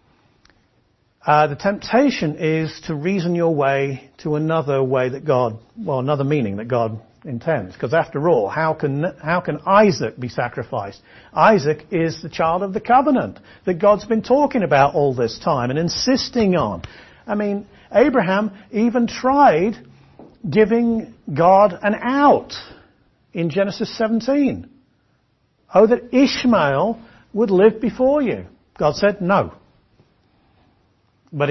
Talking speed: 135 wpm